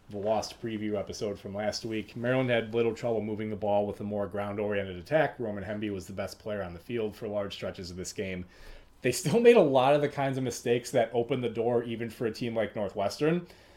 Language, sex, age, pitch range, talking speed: English, male, 30-49, 105-135 Hz, 235 wpm